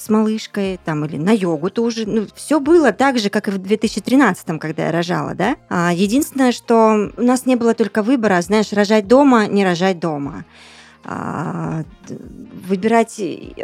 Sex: female